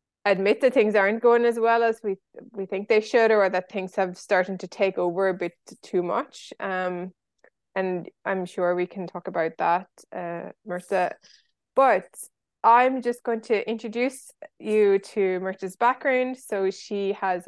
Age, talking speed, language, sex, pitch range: 20-39, 170 wpm, English, female, 185-225 Hz